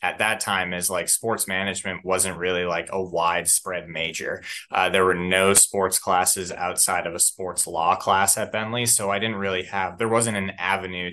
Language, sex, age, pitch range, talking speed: English, male, 20-39, 90-105 Hz, 195 wpm